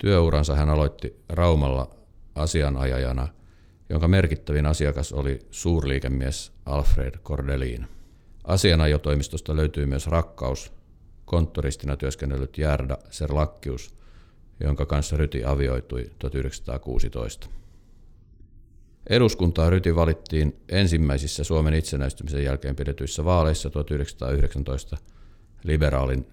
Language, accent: Finnish, native